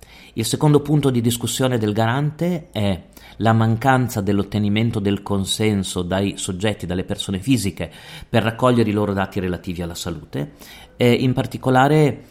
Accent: native